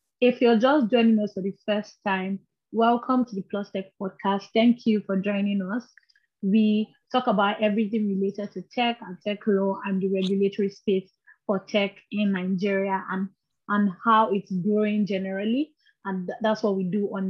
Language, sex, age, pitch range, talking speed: English, female, 20-39, 195-235 Hz, 175 wpm